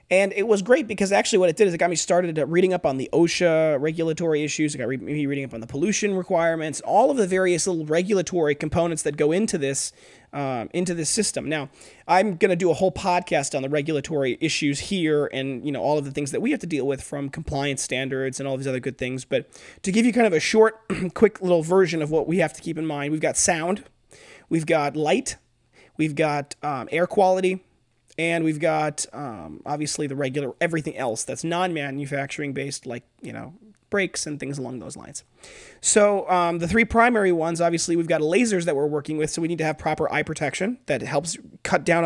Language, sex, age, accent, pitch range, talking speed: English, male, 30-49, American, 145-180 Hz, 225 wpm